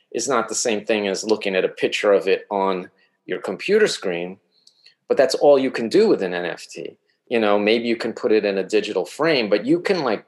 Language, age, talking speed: English, 40-59, 235 wpm